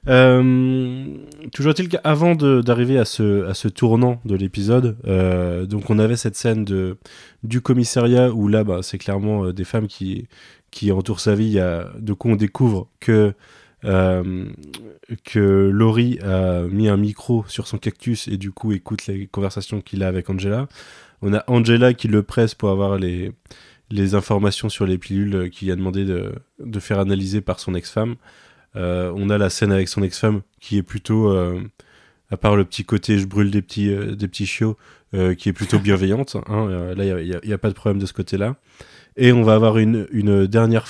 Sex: male